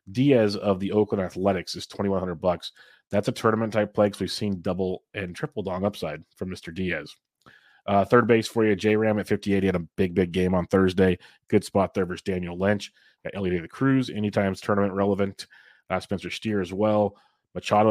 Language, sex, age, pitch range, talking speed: English, male, 30-49, 95-105 Hz, 190 wpm